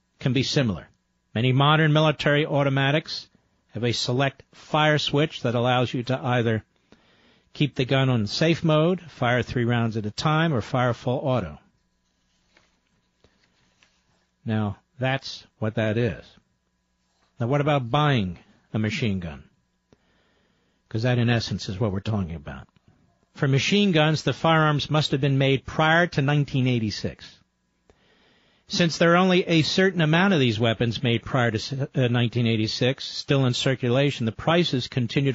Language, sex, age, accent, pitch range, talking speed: English, male, 50-69, American, 110-150 Hz, 145 wpm